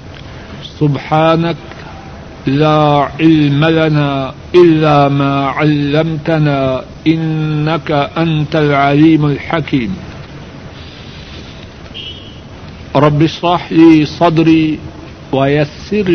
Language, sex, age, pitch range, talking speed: Urdu, male, 60-79, 135-160 Hz, 60 wpm